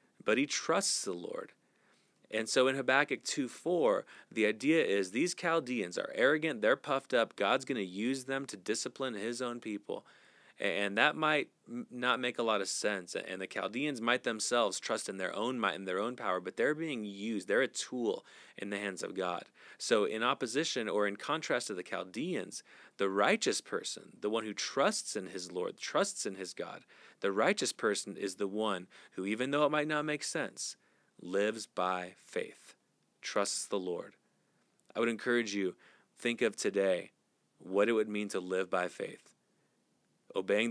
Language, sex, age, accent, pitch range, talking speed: English, male, 30-49, American, 100-120 Hz, 185 wpm